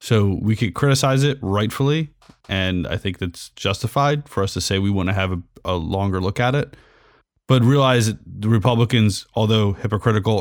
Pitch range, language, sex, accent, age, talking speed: 95-120 Hz, English, male, American, 30-49, 185 wpm